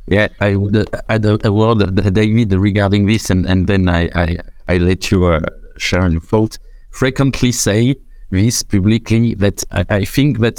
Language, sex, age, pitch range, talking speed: English, male, 50-69, 100-120 Hz, 205 wpm